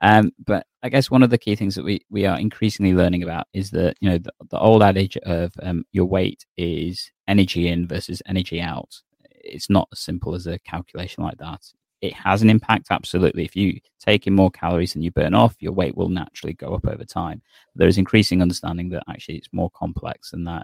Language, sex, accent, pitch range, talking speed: English, male, British, 85-100 Hz, 225 wpm